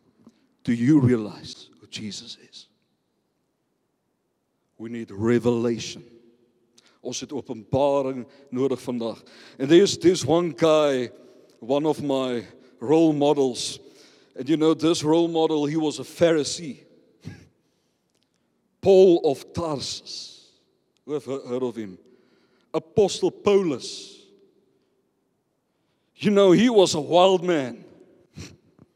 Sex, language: male, English